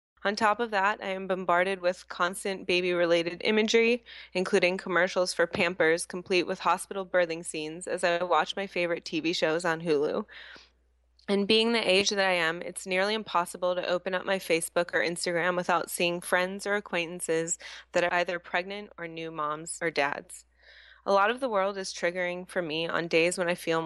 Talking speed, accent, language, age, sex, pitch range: 185 wpm, American, English, 20-39, female, 165-190 Hz